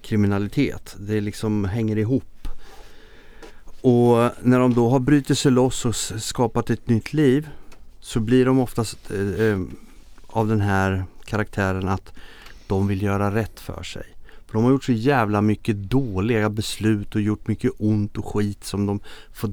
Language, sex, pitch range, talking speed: Swedish, male, 105-135 Hz, 160 wpm